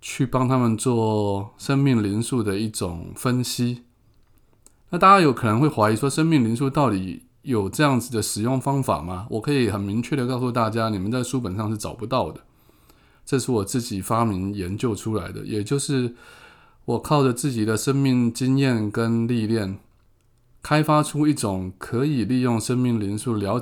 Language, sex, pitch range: Chinese, male, 105-130 Hz